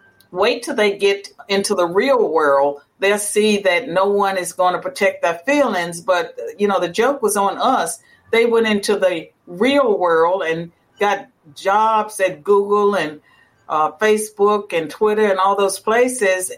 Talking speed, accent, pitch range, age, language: 170 wpm, American, 185-220 Hz, 50-69, English